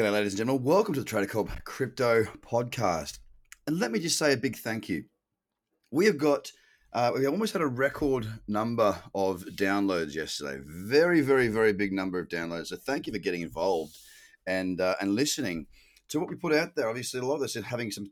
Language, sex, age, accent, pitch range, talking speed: English, male, 30-49, Australian, 100-140 Hz, 215 wpm